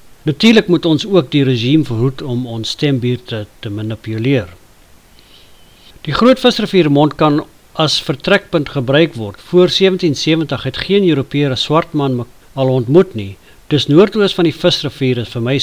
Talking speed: 145 wpm